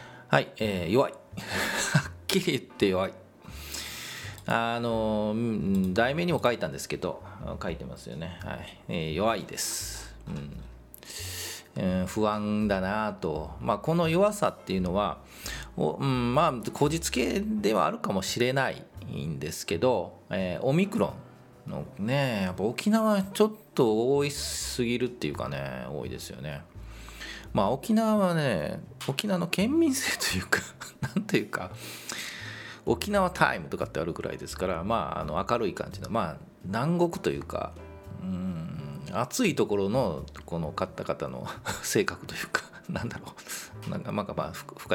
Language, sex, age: Japanese, male, 40-59